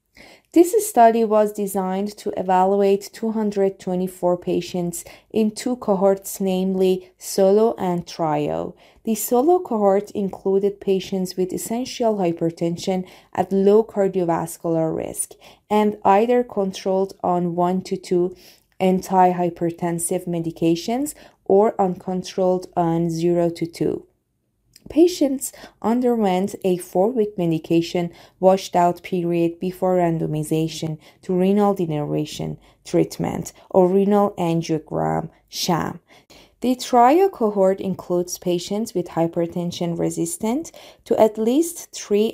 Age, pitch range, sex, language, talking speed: 20-39, 175-210 Hz, female, Persian, 100 wpm